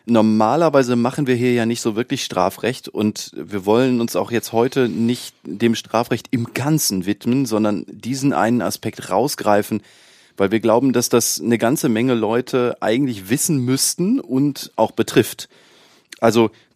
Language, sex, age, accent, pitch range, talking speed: German, male, 30-49, German, 110-130 Hz, 155 wpm